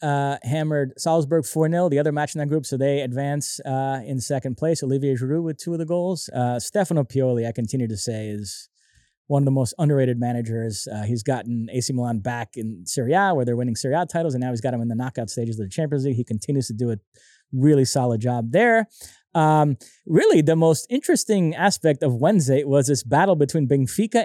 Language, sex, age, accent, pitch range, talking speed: English, male, 20-39, American, 130-165 Hz, 220 wpm